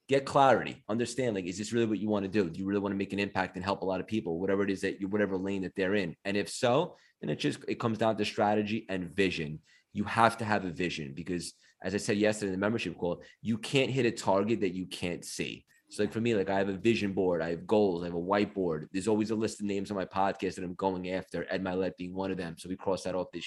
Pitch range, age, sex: 95-120 Hz, 20-39, male